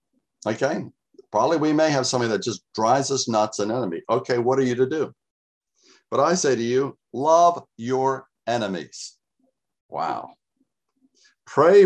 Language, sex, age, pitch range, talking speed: English, male, 60-79, 110-135 Hz, 145 wpm